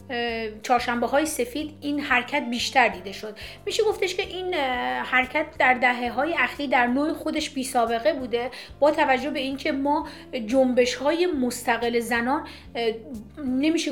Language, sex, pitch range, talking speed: Persian, female, 255-305 Hz, 140 wpm